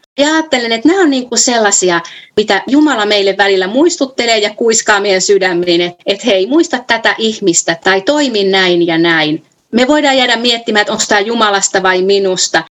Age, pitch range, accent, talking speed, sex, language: 30-49, 185-255 Hz, native, 180 wpm, female, Finnish